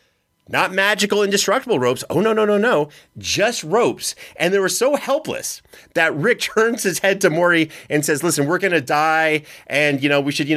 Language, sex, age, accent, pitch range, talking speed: English, male, 30-49, American, 120-160 Hz, 200 wpm